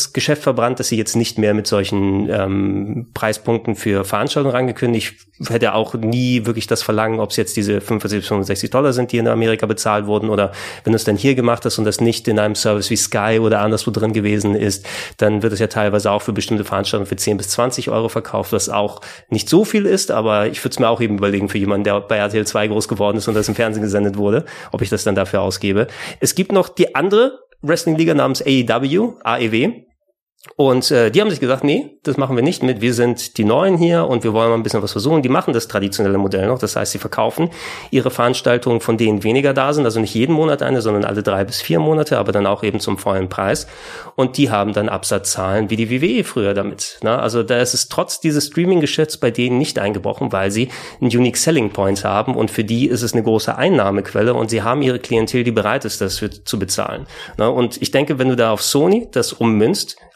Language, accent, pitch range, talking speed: German, German, 105-130 Hz, 230 wpm